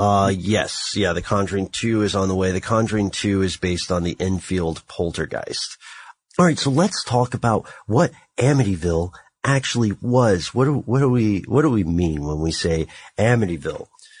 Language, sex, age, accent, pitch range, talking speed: English, male, 40-59, American, 85-115 Hz, 175 wpm